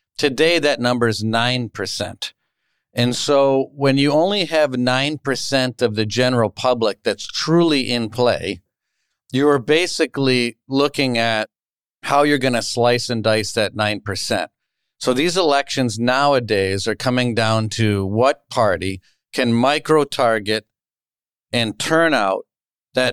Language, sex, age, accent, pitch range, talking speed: English, male, 50-69, American, 115-145 Hz, 130 wpm